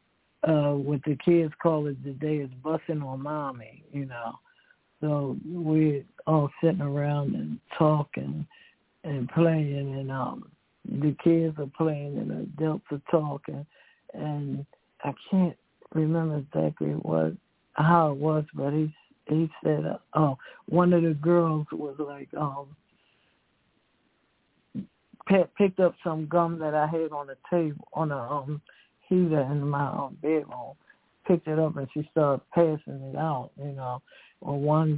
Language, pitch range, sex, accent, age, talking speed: English, 140-160 Hz, male, American, 60-79, 150 wpm